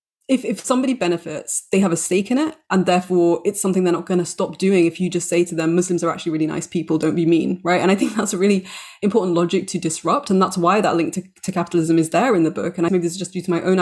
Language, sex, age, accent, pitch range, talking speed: English, female, 20-39, British, 170-205 Hz, 300 wpm